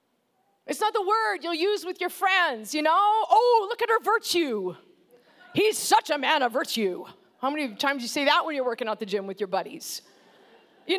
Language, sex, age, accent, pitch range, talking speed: English, female, 40-59, American, 295-415 Hz, 215 wpm